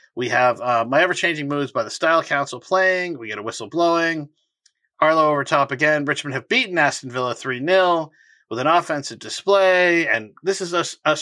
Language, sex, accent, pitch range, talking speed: English, male, American, 120-170 Hz, 180 wpm